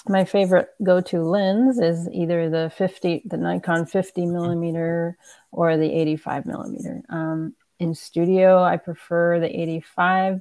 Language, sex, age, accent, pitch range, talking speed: English, female, 30-49, American, 160-190 Hz, 135 wpm